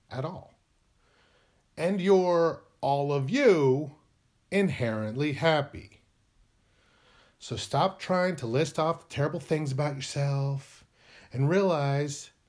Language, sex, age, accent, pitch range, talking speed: English, male, 30-49, American, 115-190 Hz, 105 wpm